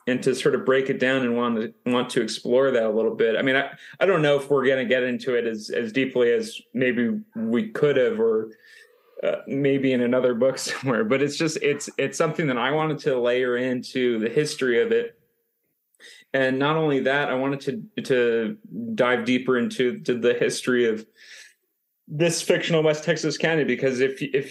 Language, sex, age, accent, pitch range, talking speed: English, male, 30-49, American, 120-155 Hz, 205 wpm